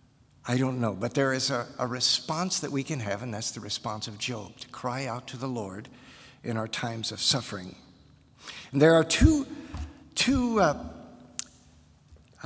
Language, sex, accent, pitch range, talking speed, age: English, male, American, 115-150 Hz, 175 wpm, 50-69